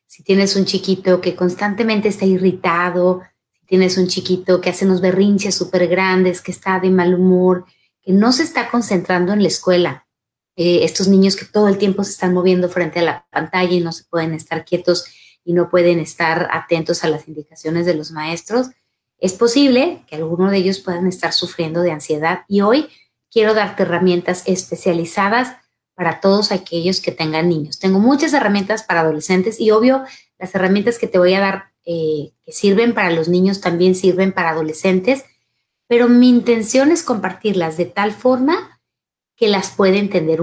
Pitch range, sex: 170-200 Hz, female